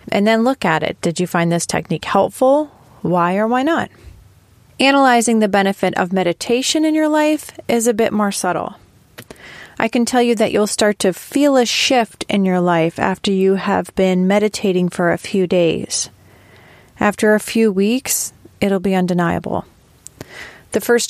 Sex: female